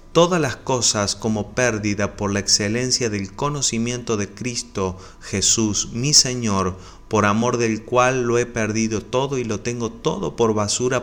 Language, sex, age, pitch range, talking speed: Spanish, male, 30-49, 100-120 Hz, 160 wpm